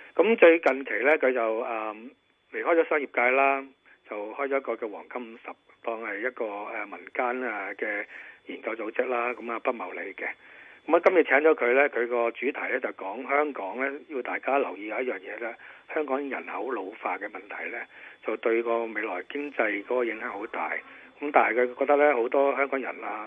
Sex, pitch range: male, 115-145 Hz